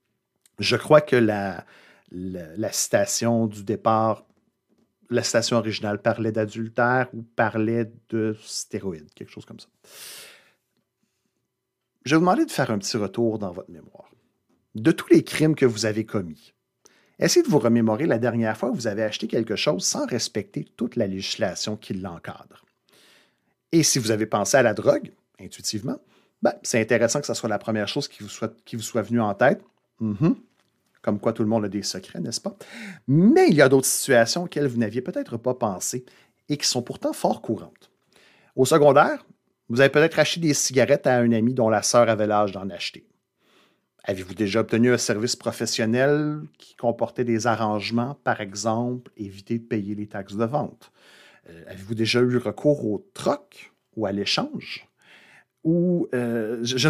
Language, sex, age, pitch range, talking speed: French, male, 50-69, 105-130 Hz, 175 wpm